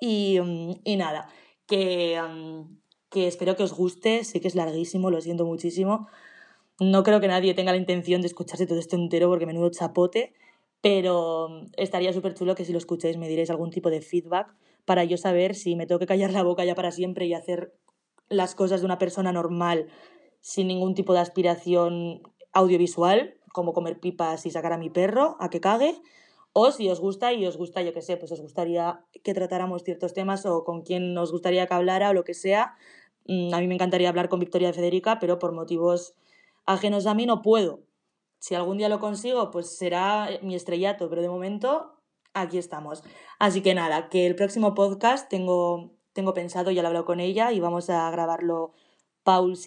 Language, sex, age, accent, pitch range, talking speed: Spanish, female, 20-39, Spanish, 170-190 Hz, 195 wpm